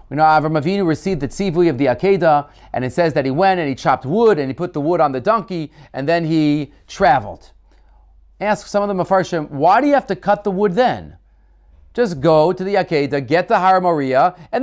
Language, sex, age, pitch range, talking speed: English, male, 30-49, 140-200 Hz, 225 wpm